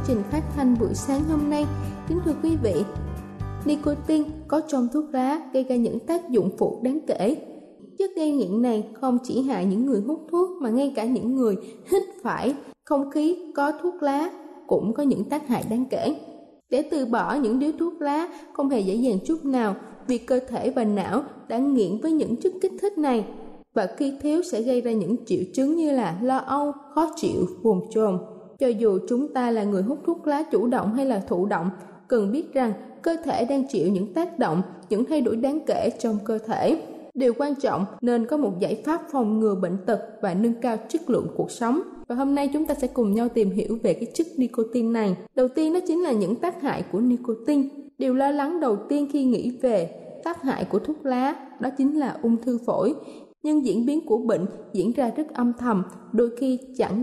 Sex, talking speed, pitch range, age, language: female, 215 wpm, 220-290 Hz, 20-39, Vietnamese